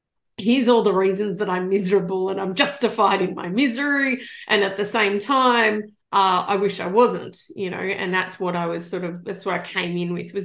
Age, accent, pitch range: 30-49, Australian, 190-230 Hz